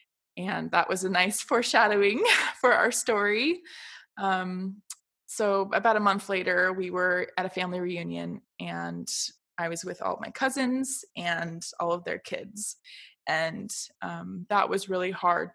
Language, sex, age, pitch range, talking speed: English, female, 20-39, 180-210 Hz, 150 wpm